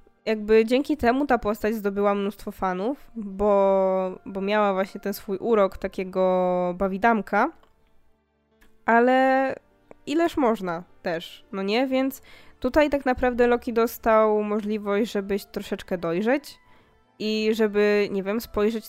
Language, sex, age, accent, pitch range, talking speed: Polish, female, 20-39, native, 190-225 Hz, 120 wpm